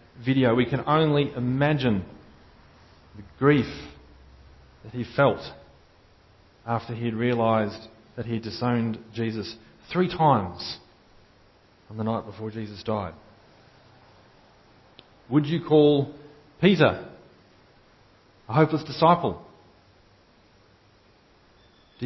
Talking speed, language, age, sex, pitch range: 95 wpm, English, 40-59, male, 100-135 Hz